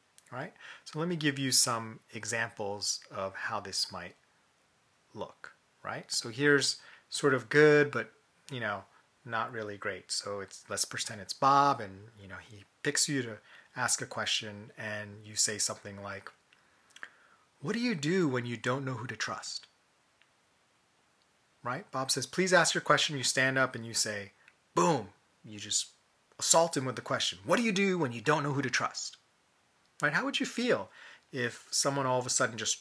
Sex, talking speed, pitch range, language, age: male, 180 wpm, 110-145 Hz, English, 30-49